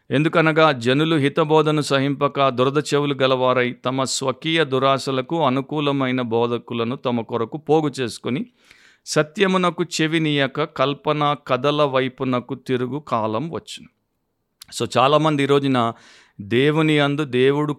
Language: Telugu